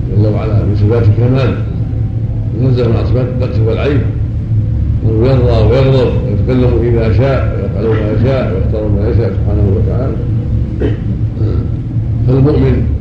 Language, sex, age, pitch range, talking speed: Arabic, male, 50-69, 110-115 Hz, 115 wpm